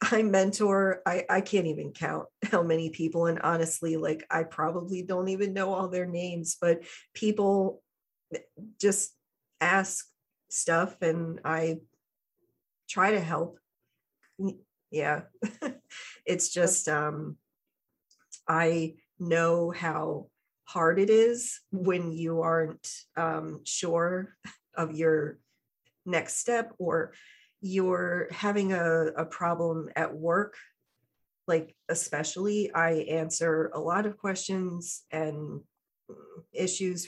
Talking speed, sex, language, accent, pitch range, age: 110 wpm, female, English, American, 165-210 Hz, 40-59